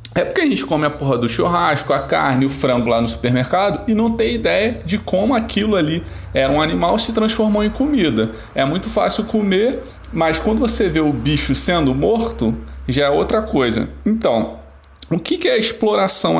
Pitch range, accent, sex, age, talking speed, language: 140-215 Hz, Brazilian, male, 20-39, 195 wpm, Portuguese